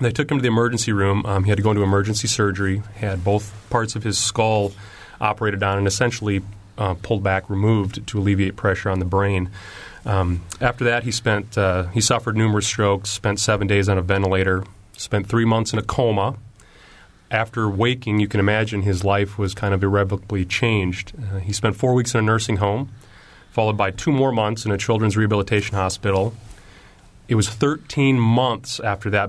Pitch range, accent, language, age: 100-110 Hz, American, English, 30-49